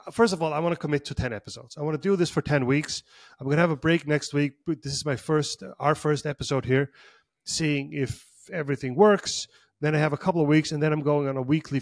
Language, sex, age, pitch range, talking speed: English, male, 30-49, 135-165 Hz, 270 wpm